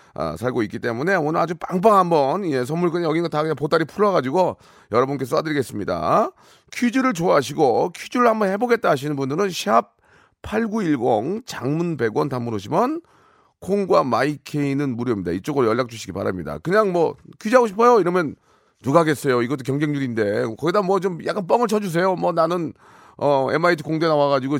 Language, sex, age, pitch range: Korean, male, 30-49, 120-180 Hz